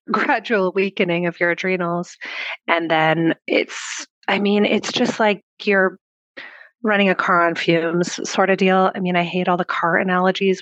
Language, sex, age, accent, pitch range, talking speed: English, female, 30-49, American, 170-230 Hz, 170 wpm